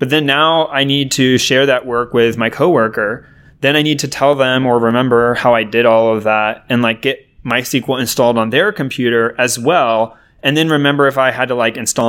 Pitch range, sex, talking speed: 115-140 Hz, male, 225 wpm